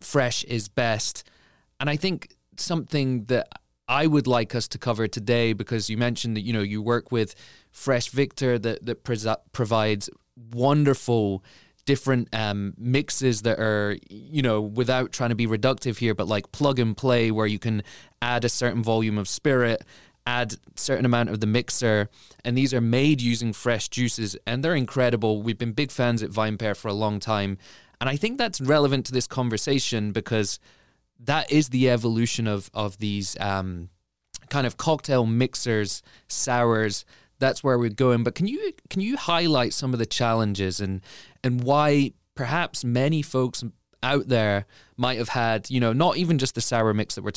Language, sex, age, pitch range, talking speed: English, male, 20-39, 105-130 Hz, 180 wpm